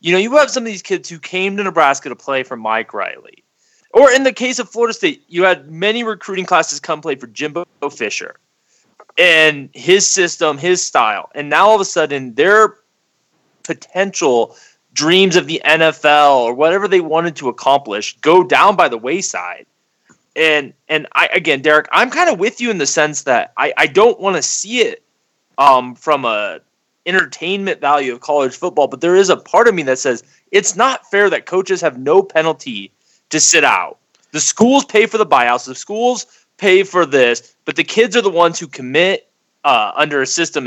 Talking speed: 200 wpm